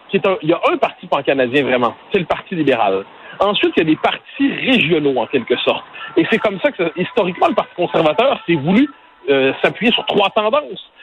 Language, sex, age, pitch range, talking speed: French, male, 40-59, 150-225 Hz, 210 wpm